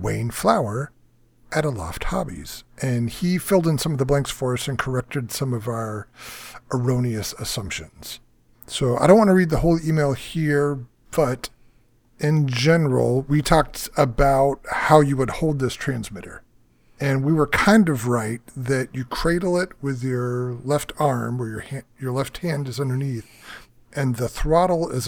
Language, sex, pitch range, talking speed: English, male, 115-140 Hz, 165 wpm